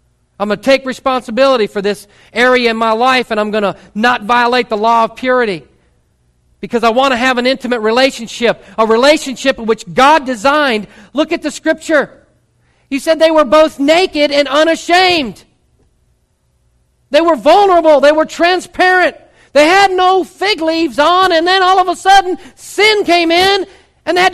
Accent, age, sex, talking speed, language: American, 40-59, male, 175 wpm, English